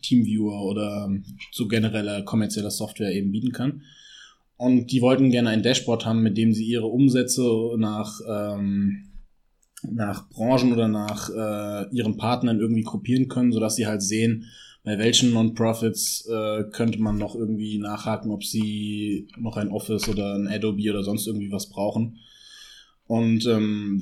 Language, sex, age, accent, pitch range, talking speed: German, male, 20-39, German, 105-115 Hz, 150 wpm